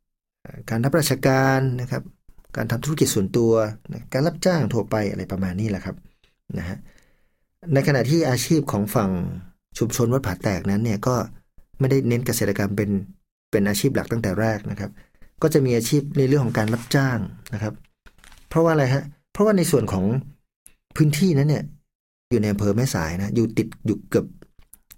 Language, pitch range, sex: Thai, 100-135 Hz, male